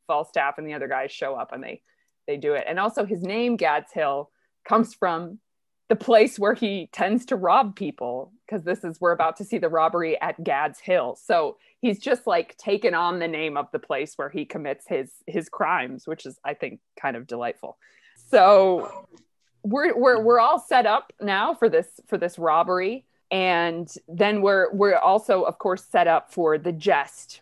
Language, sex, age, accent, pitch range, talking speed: English, female, 20-39, American, 165-235 Hz, 195 wpm